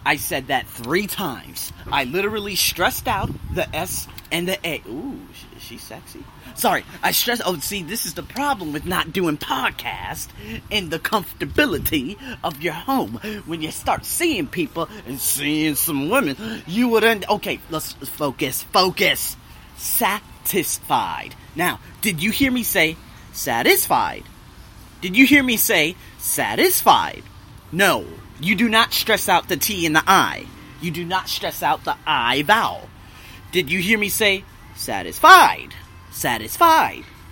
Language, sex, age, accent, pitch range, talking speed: English, male, 30-49, American, 140-220 Hz, 150 wpm